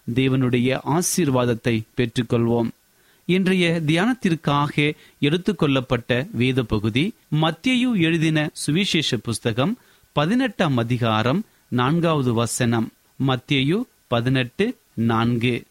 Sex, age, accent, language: male, 30-49, native, Tamil